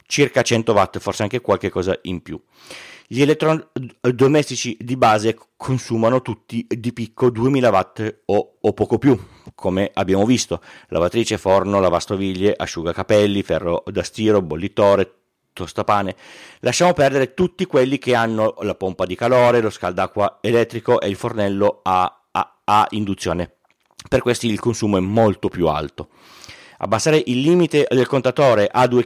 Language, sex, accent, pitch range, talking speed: Italian, male, native, 100-140 Hz, 145 wpm